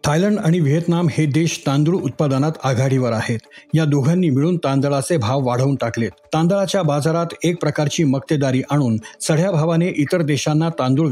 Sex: male